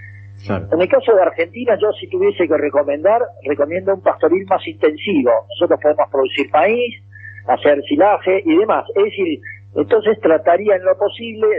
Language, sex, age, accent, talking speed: Portuguese, male, 50-69, Argentinian, 155 wpm